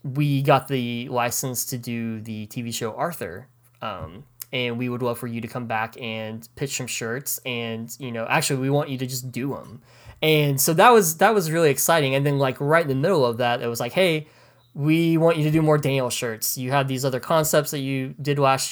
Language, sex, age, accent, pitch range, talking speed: English, male, 20-39, American, 115-145 Hz, 235 wpm